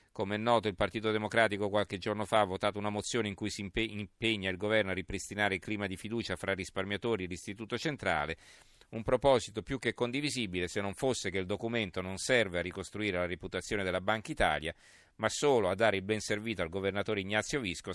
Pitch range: 95-115 Hz